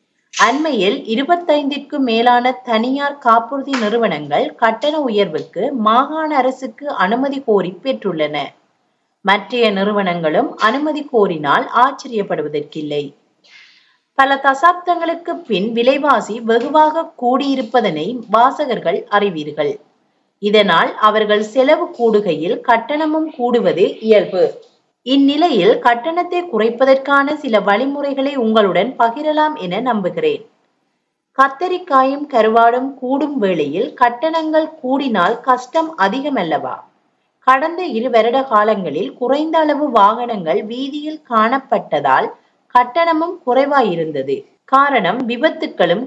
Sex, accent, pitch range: female, native, 220-300 Hz